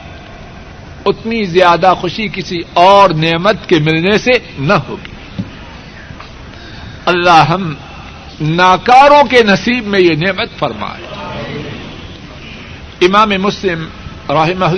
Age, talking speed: 60-79, 95 wpm